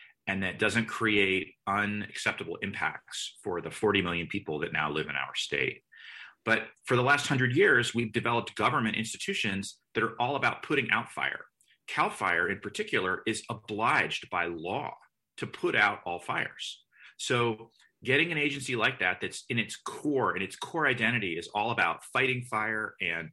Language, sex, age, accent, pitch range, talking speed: English, male, 30-49, American, 100-125 Hz, 170 wpm